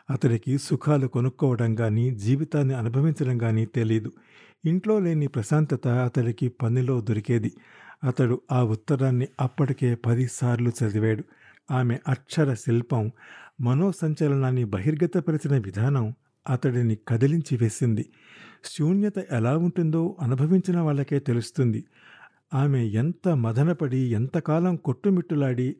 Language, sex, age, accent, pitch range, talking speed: Telugu, male, 50-69, native, 120-155 Hz, 95 wpm